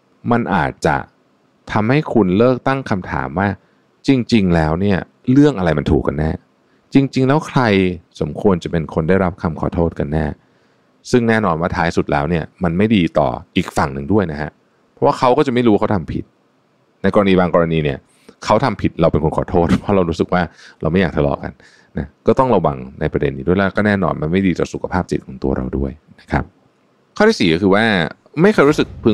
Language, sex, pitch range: Thai, male, 75-100 Hz